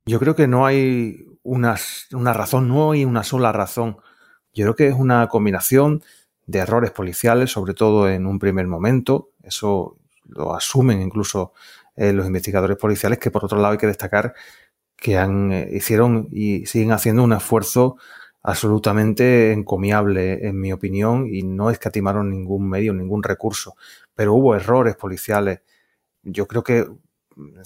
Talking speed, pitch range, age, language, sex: 150 wpm, 100-120 Hz, 30-49, Spanish, male